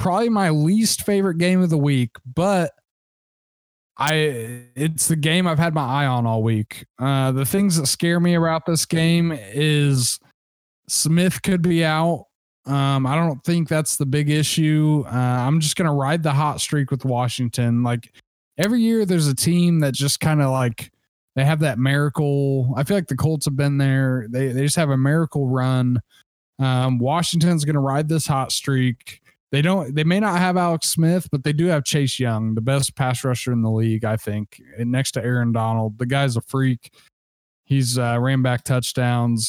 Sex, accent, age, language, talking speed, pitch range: male, American, 20-39, English, 195 wpm, 125-155 Hz